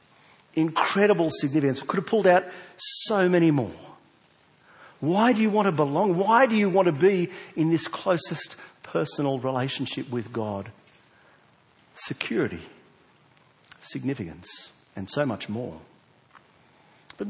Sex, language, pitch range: male, English, 130-195 Hz